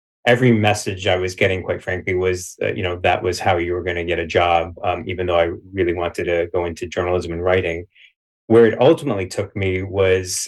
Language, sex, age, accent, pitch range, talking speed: English, male, 30-49, American, 90-105 Hz, 225 wpm